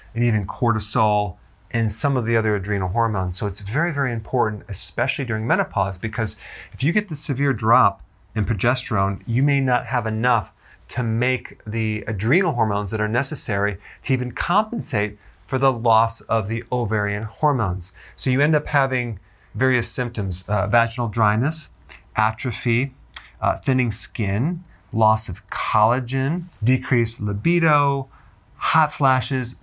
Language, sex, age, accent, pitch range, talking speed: English, male, 30-49, American, 105-130 Hz, 145 wpm